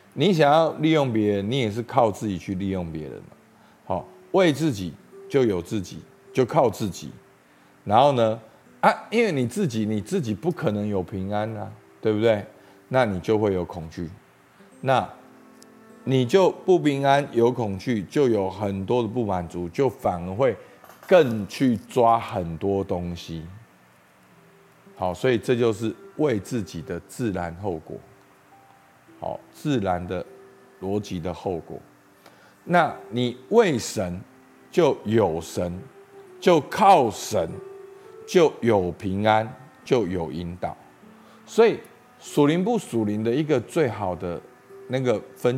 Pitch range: 95-140 Hz